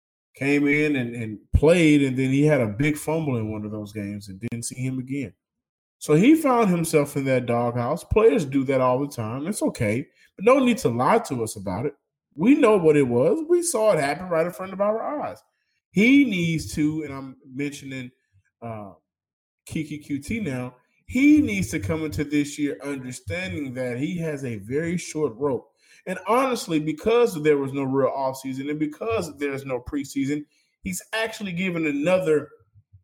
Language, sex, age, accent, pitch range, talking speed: English, male, 20-39, American, 125-155 Hz, 185 wpm